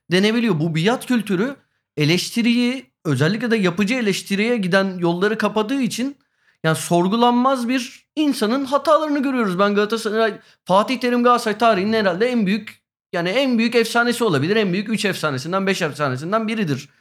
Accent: native